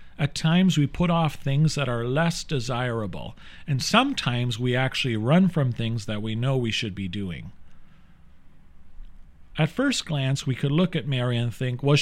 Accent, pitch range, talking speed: American, 110-170 Hz, 175 wpm